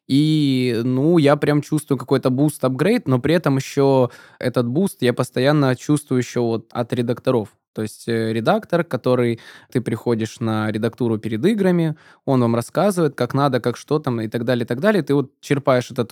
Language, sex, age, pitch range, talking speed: Russian, male, 20-39, 125-160 Hz, 175 wpm